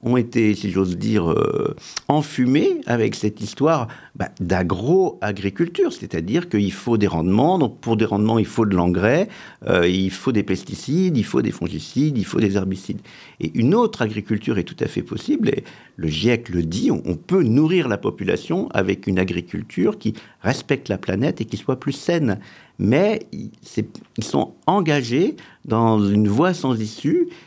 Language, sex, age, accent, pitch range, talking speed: French, male, 50-69, French, 95-155 Hz, 175 wpm